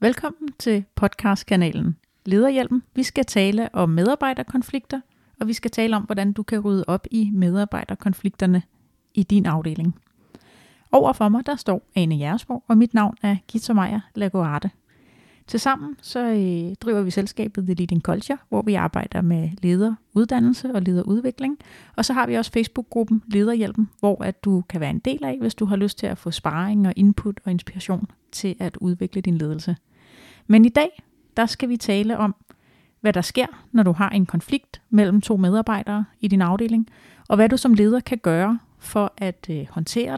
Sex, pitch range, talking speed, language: female, 190-235 Hz, 170 wpm, Danish